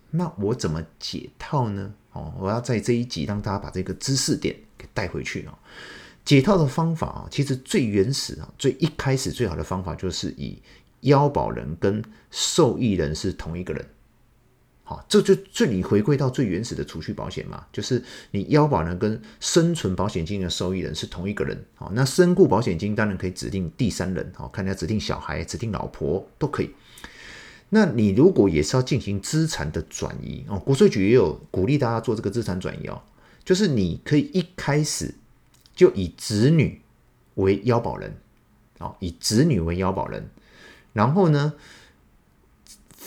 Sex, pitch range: male, 95-145 Hz